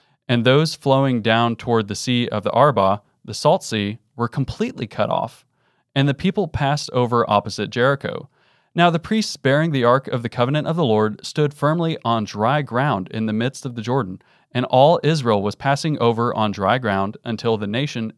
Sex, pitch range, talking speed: male, 110-140 Hz, 195 wpm